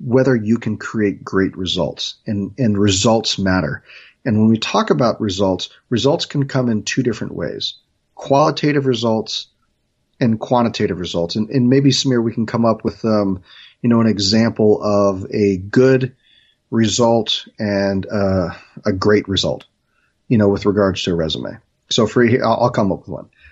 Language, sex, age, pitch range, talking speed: English, male, 40-59, 100-125 Hz, 170 wpm